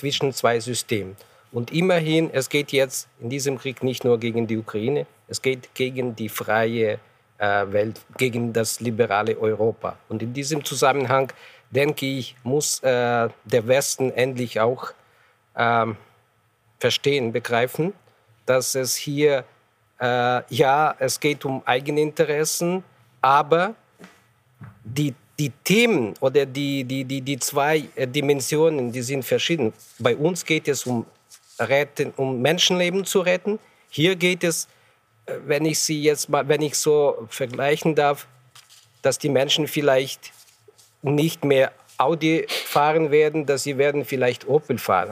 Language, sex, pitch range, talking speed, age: German, male, 120-150 Hz, 135 wpm, 50-69